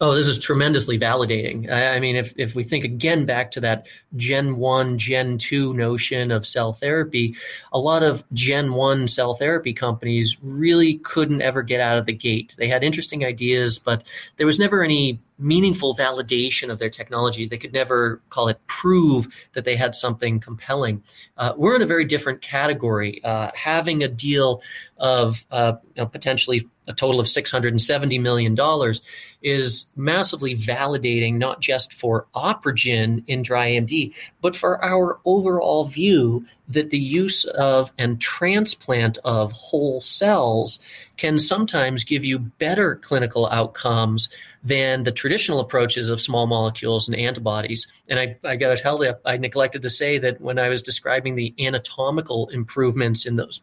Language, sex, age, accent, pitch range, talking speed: English, male, 30-49, American, 120-145 Hz, 165 wpm